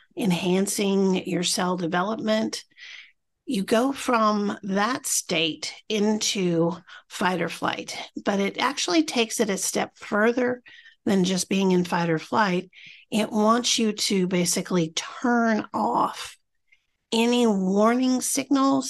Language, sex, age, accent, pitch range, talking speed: English, female, 50-69, American, 175-220 Hz, 120 wpm